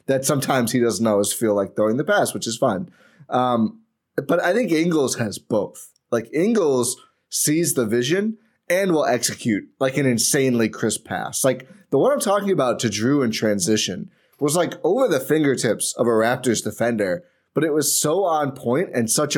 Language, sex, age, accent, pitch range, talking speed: English, male, 20-39, American, 115-155 Hz, 185 wpm